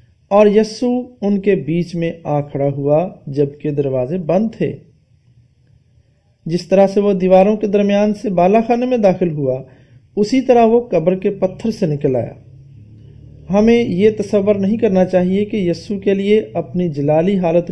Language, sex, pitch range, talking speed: English, male, 150-215 Hz, 150 wpm